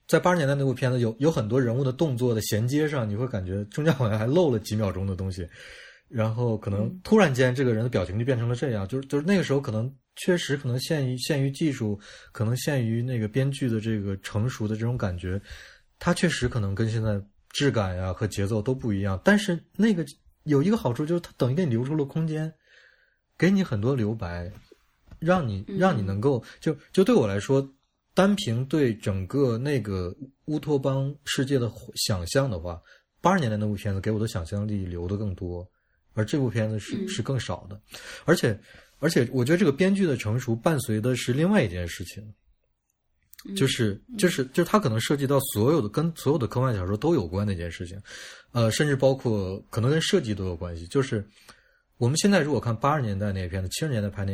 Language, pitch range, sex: Chinese, 105-145 Hz, male